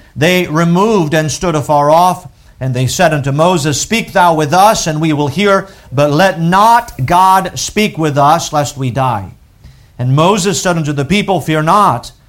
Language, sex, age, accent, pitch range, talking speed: English, male, 50-69, American, 105-150 Hz, 180 wpm